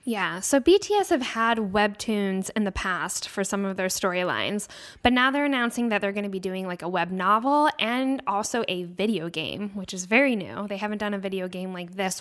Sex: female